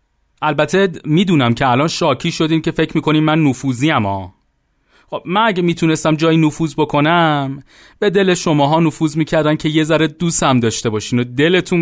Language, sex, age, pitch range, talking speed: Persian, male, 40-59, 140-185 Hz, 170 wpm